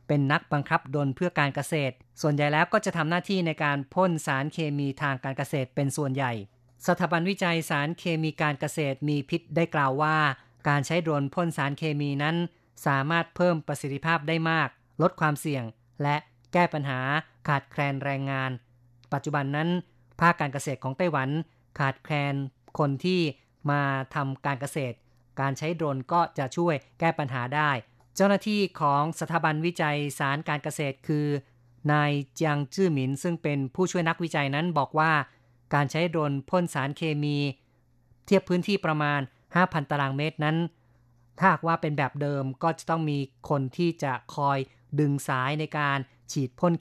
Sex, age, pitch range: female, 30-49, 135-165 Hz